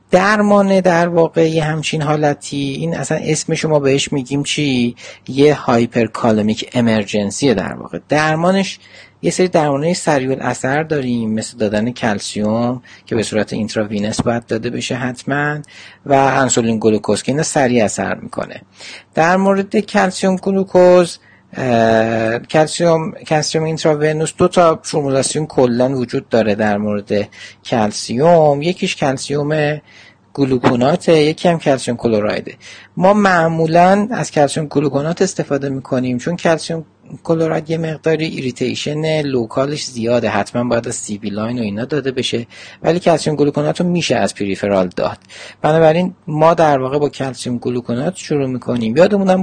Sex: male